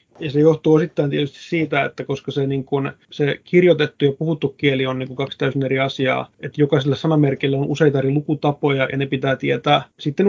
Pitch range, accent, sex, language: 135-160 Hz, native, male, Finnish